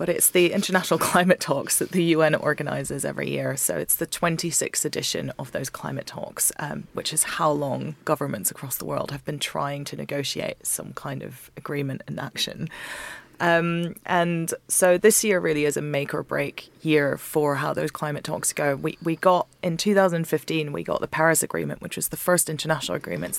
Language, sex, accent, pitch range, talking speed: English, female, British, 145-170 Hz, 190 wpm